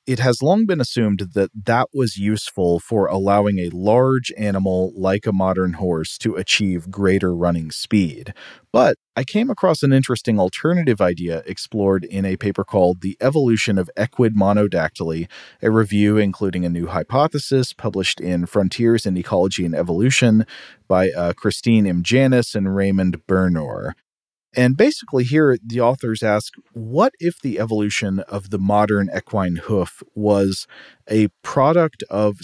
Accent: American